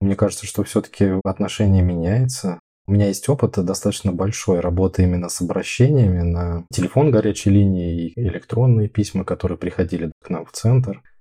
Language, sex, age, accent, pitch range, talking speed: Russian, male, 20-39, native, 90-105 Hz, 160 wpm